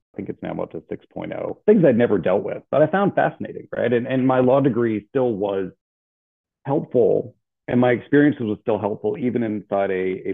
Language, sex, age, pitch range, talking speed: English, male, 40-59, 90-120 Hz, 205 wpm